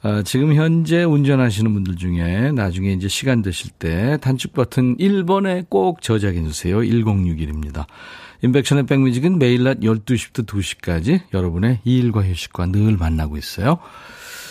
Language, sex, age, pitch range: Korean, male, 40-59, 100-160 Hz